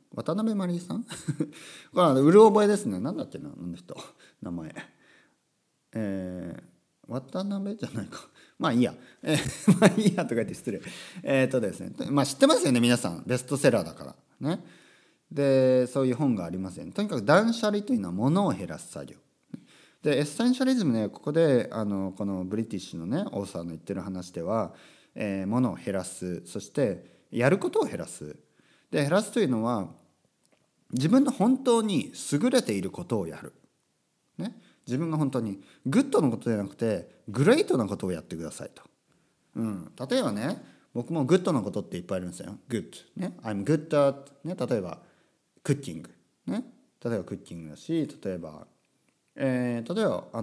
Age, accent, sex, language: 40-59, native, male, Japanese